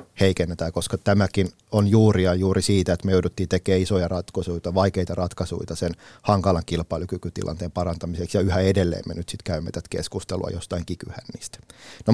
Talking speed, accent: 160 wpm, native